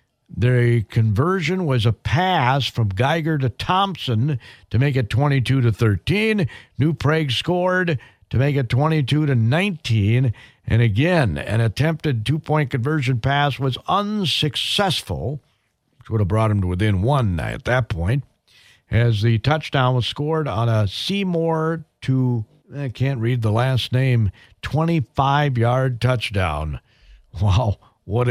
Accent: American